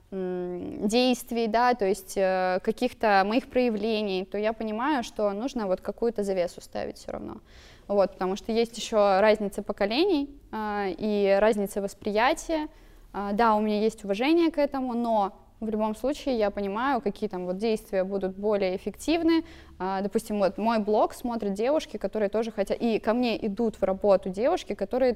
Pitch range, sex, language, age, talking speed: 205-255 Hz, female, Russian, 20-39, 155 wpm